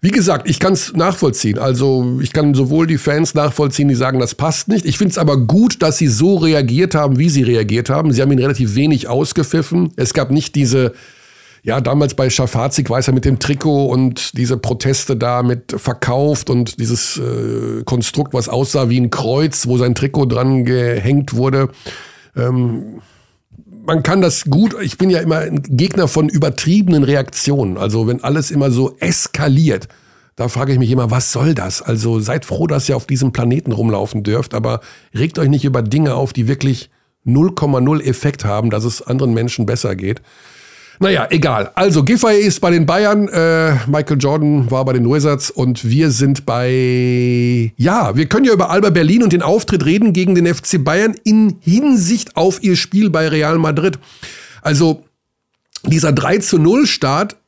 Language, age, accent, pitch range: German, 50-69, German, 125-165 Hz